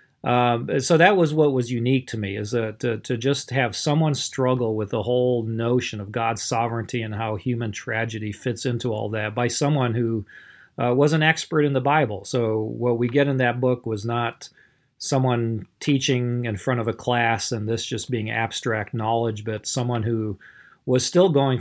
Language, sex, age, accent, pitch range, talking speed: English, male, 40-59, American, 110-130 Hz, 195 wpm